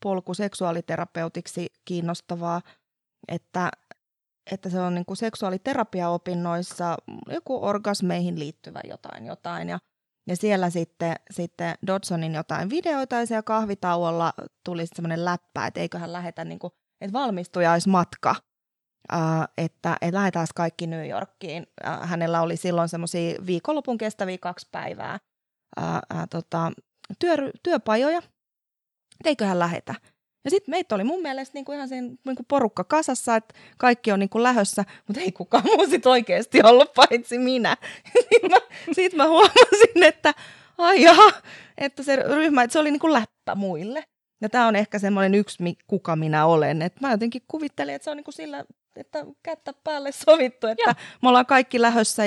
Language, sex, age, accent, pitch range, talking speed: Finnish, female, 20-39, native, 175-265 Hz, 135 wpm